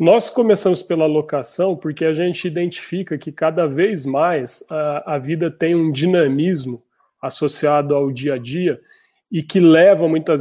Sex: male